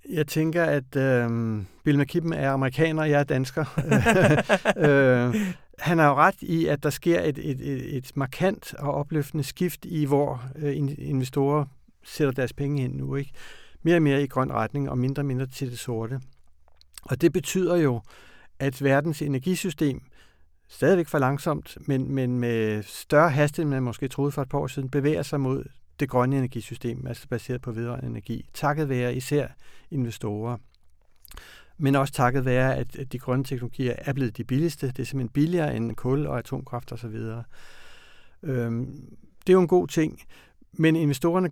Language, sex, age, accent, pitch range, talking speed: Danish, male, 60-79, native, 125-150 Hz, 175 wpm